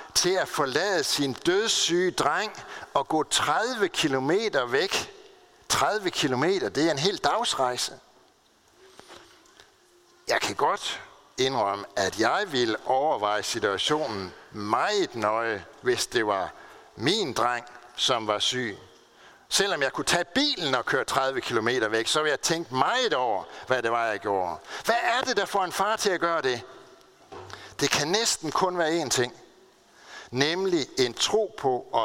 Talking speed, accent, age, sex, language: 150 wpm, native, 60-79, male, Danish